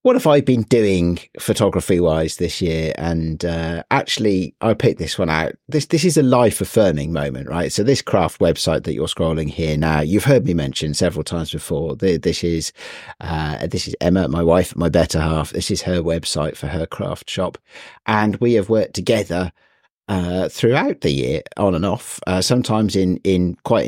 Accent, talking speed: British, 190 wpm